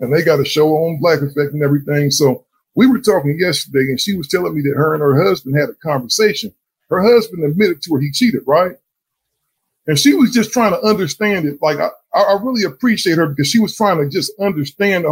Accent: American